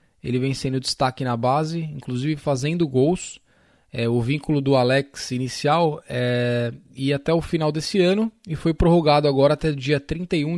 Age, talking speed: 10-29, 165 wpm